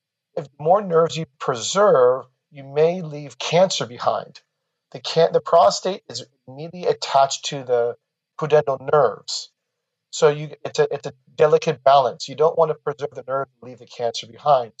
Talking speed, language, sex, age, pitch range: 160 wpm, English, male, 40-59, 130-165 Hz